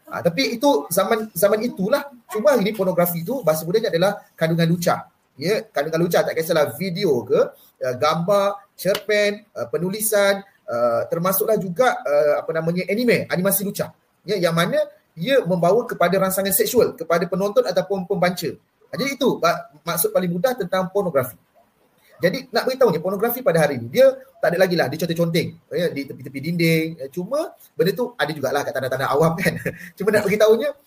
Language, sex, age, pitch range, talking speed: Malay, male, 30-49, 165-215 Hz, 165 wpm